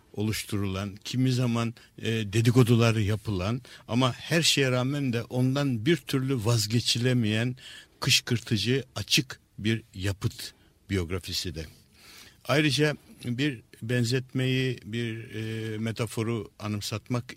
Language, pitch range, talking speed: Turkish, 105-125 Hz, 95 wpm